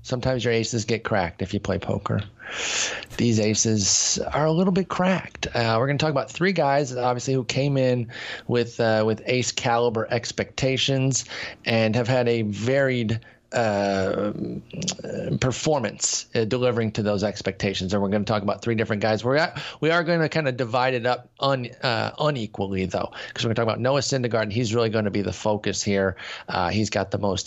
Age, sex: 30-49, male